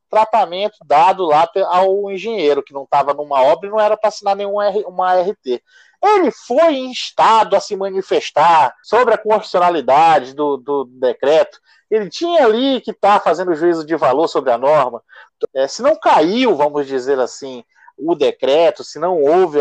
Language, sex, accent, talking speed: Portuguese, male, Brazilian, 170 wpm